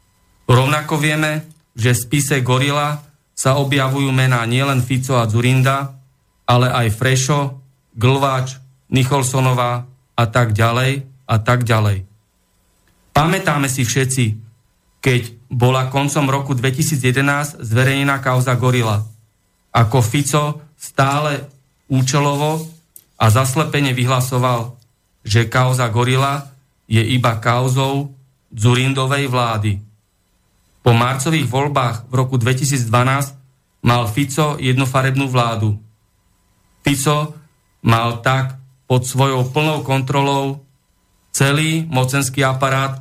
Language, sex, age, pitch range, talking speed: Slovak, male, 40-59, 115-140 Hz, 95 wpm